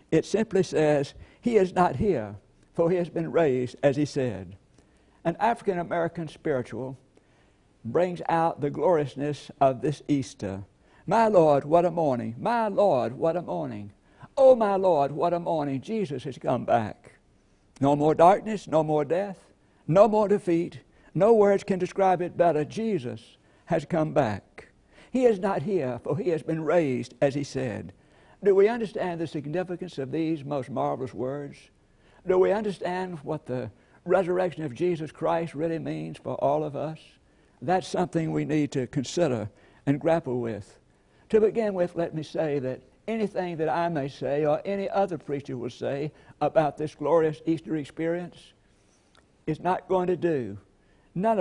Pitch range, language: 130-180 Hz, English